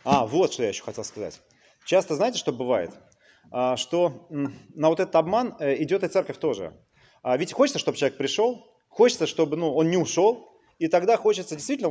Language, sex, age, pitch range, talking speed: Russian, male, 30-49, 130-180 Hz, 175 wpm